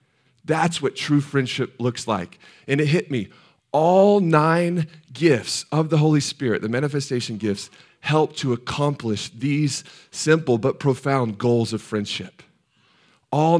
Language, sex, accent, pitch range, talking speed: English, male, American, 110-140 Hz, 135 wpm